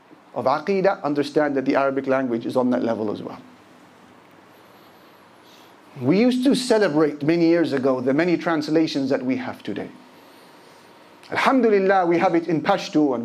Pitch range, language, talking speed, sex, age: 130-170 Hz, English, 150 wpm, male, 40-59